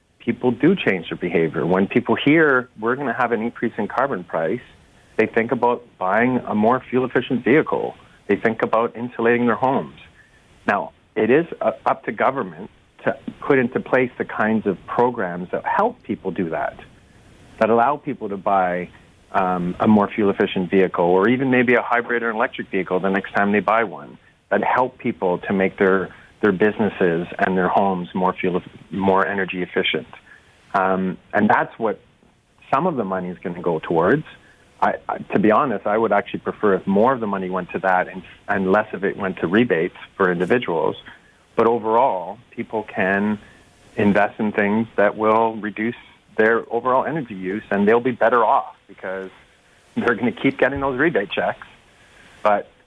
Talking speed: 180 wpm